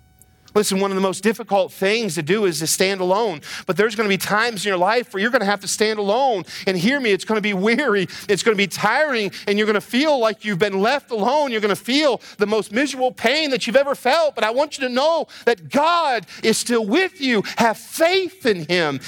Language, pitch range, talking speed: English, 165-230 Hz, 255 wpm